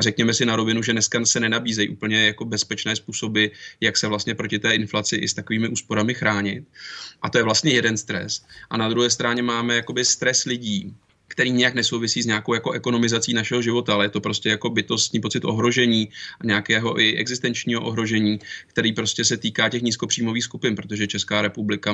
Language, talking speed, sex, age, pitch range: Czech, 190 wpm, male, 20-39, 105-115 Hz